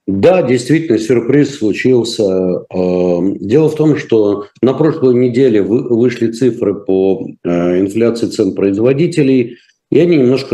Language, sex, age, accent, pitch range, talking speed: Russian, male, 50-69, native, 105-150 Hz, 115 wpm